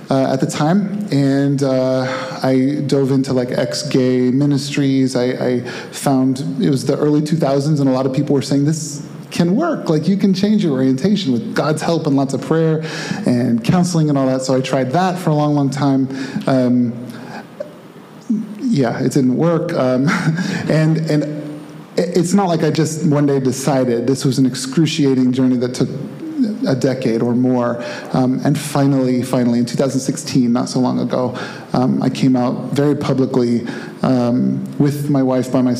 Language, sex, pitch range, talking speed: English, male, 130-175 Hz, 180 wpm